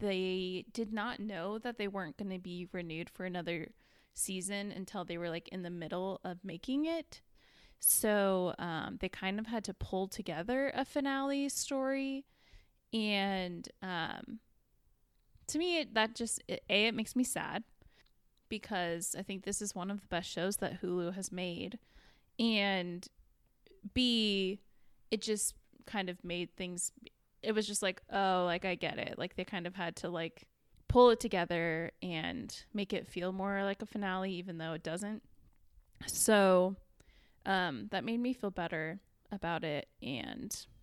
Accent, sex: American, female